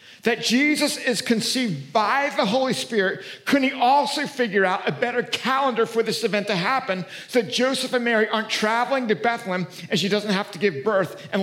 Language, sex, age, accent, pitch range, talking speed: English, male, 50-69, American, 190-240 Hz, 200 wpm